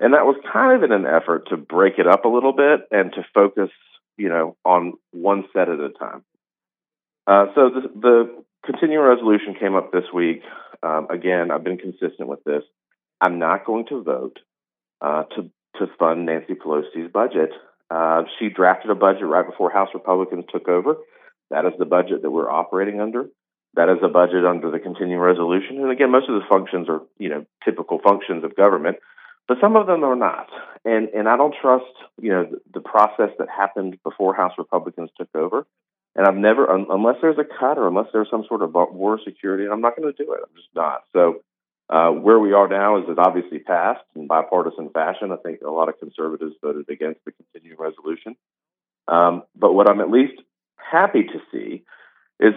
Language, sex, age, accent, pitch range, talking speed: English, male, 40-59, American, 90-120 Hz, 205 wpm